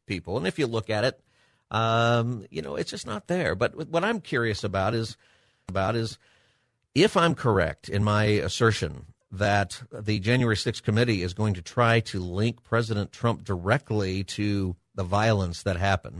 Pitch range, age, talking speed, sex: 105-135 Hz, 50-69, 175 wpm, male